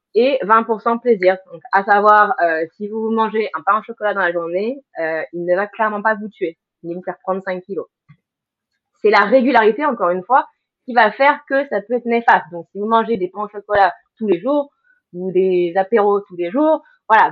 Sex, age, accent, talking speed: female, 20-39, French, 220 wpm